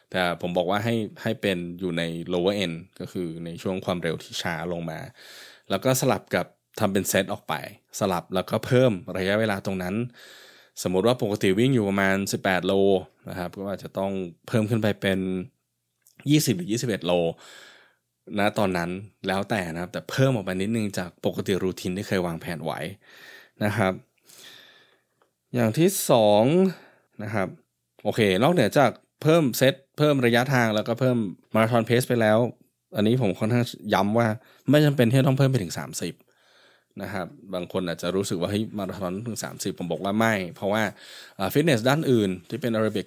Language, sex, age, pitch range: Thai, male, 20-39, 90-115 Hz